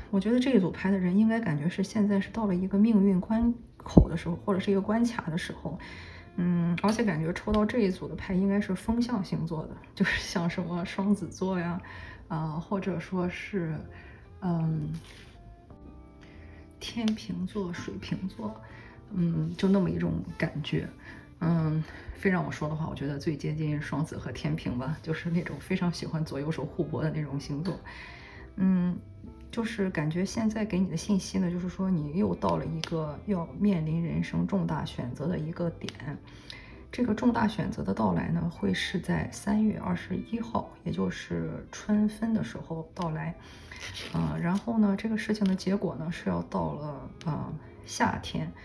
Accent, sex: native, female